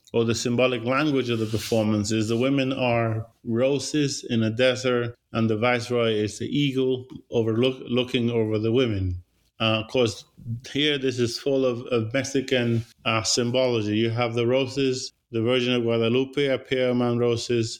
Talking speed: 165 wpm